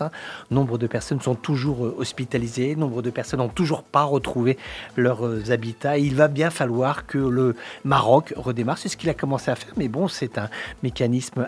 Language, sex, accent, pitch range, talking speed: English, male, French, 120-145 Hz, 185 wpm